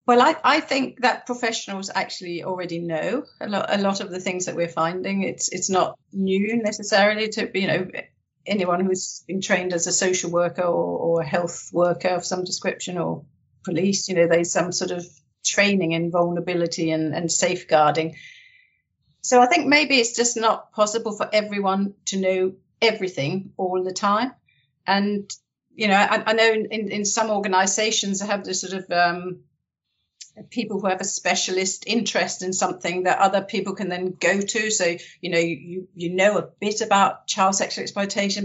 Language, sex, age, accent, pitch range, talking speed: English, female, 50-69, British, 175-200 Hz, 185 wpm